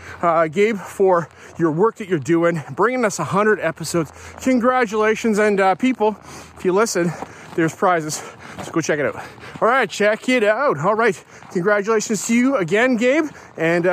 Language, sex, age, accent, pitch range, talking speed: English, male, 30-49, American, 160-215 Hz, 170 wpm